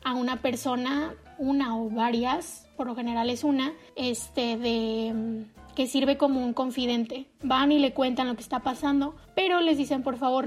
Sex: female